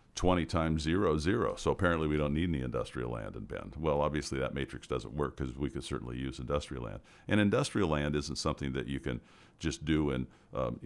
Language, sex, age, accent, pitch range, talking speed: English, male, 50-69, American, 65-80 Hz, 215 wpm